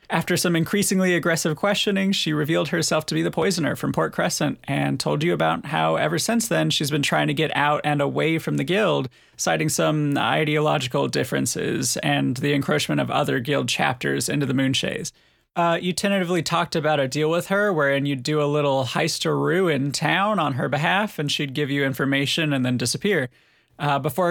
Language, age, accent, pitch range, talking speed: English, 30-49, American, 145-175 Hz, 195 wpm